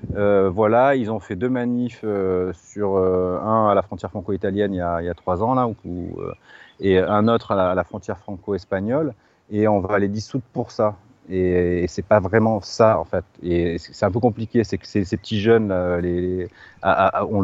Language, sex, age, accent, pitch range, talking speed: French, male, 30-49, French, 90-105 Hz, 220 wpm